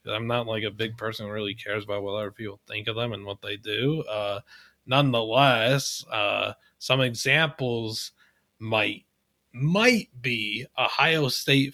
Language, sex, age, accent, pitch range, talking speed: English, male, 30-49, American, 105-140 Hz, 155 wpm